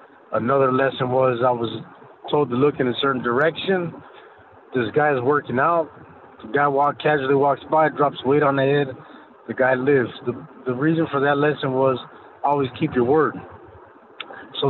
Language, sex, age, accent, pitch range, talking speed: English, male, 30-49, American, 130-155 Hz, 175 wpm